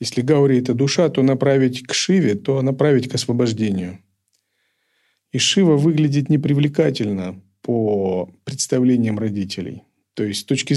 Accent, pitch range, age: native, 105-140 Hz, 40-59